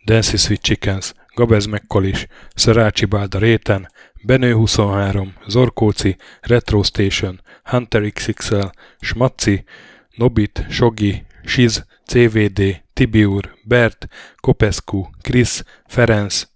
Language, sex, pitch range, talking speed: Hungarian, male, 100-120 Hz, 90 wpm